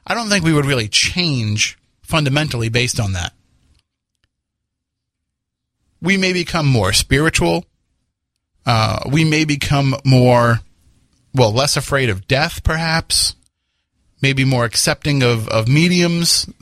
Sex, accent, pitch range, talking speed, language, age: male, American, 105-140 Hz, 120 wpm, English, 30-49